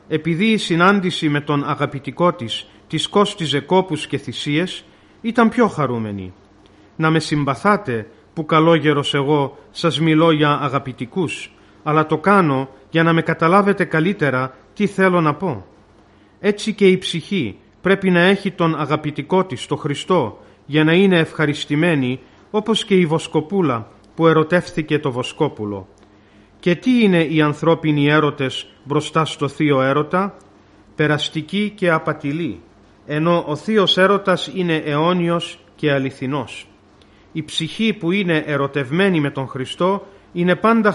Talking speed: 135 wpm